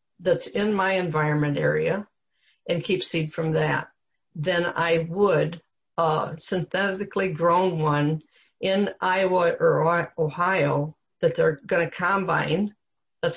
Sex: female